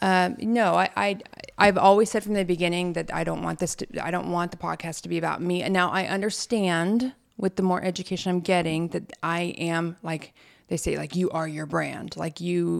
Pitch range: 170-195 Hz